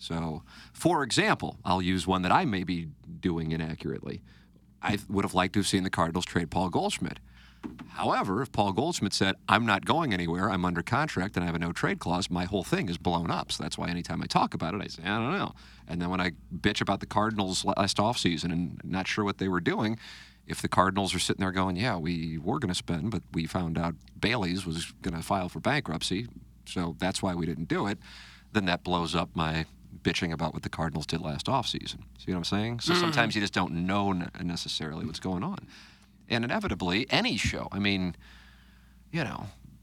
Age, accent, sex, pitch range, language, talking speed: 40-59, American, male, 85-100 Hz, English, 220 wpm